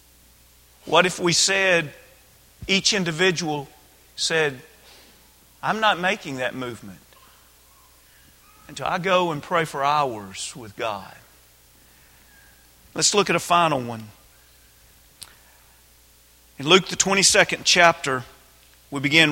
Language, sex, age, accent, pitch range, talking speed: English, male, 40-59, American, 120-195 Hz, 105 wpm